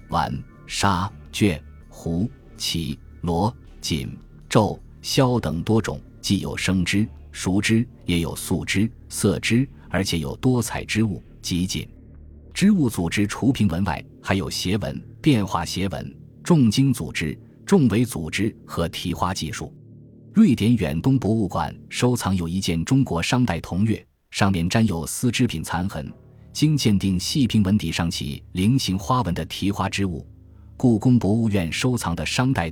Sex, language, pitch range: male, Chinese, 85-115 Hz